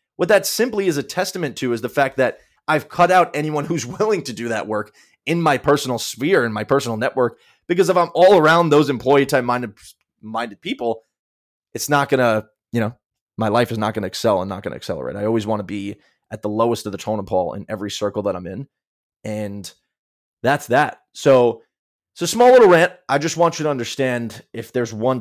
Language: English